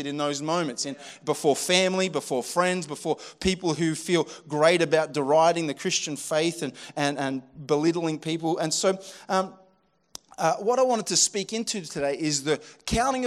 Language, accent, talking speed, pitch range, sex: English, Australian, 165 wpm, 150-195 Hz, male